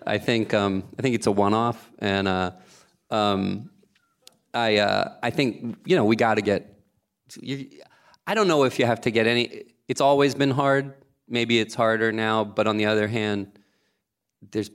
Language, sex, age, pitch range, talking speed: English, male, 30-49, 95-115 Hz, 185 wpm